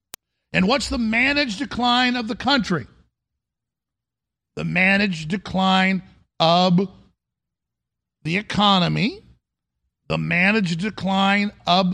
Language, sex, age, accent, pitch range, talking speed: English, male, 50-69, American, 175-240 Hz, 90 wpm